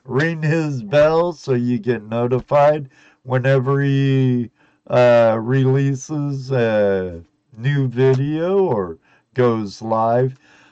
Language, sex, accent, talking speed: English, male, American, 95 wpm